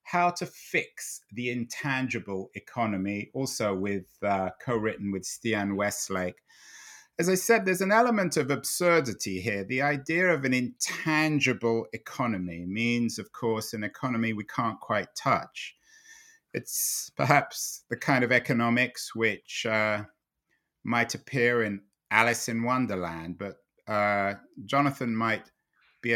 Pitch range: 110-145 Hz